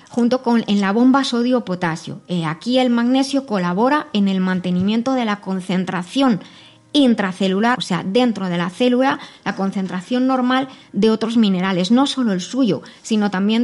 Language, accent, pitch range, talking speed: Spanish, Spanish, 200-255 Hz, 150 wpm